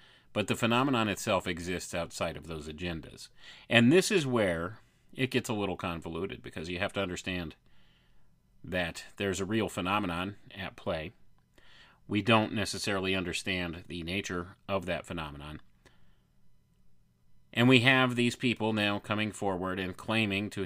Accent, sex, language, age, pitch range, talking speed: American, male, English, 30-49, 80-125 Hz, 145 wpm